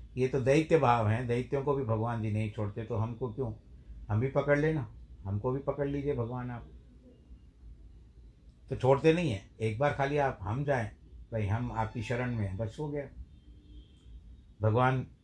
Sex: male